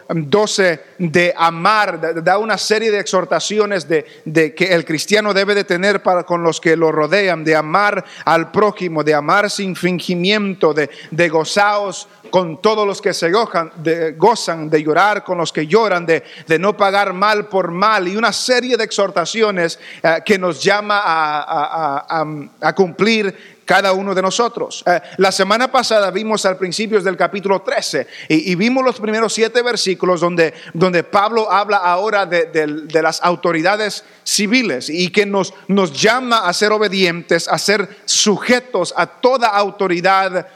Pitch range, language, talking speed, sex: 170-210 Hz, English, 165 wpm, male